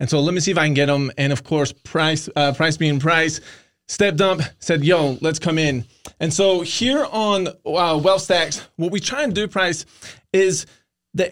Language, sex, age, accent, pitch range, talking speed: English, male, 20-39, American, 145-185 Hz, 210 wpm